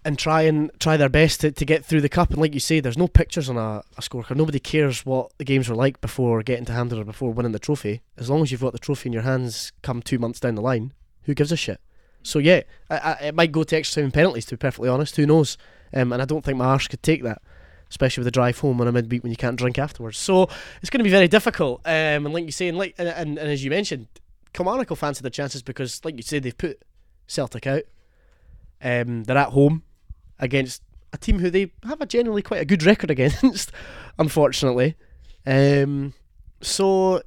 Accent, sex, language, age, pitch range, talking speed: British, male, English, 20-39, 120-155 Hz, 245 wpm